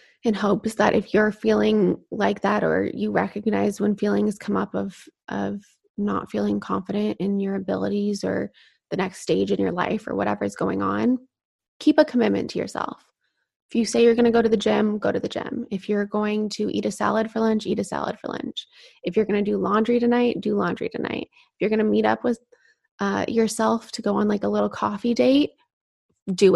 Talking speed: 215 wpm